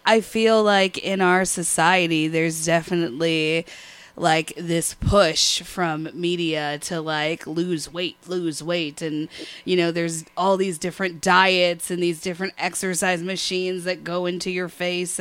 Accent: American